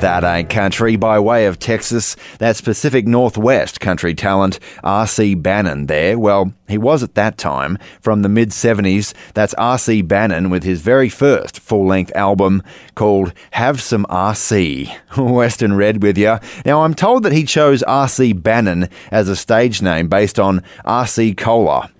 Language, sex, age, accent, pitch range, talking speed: English, male, 30-49, Australian, 95-115 Hz, 155 wpm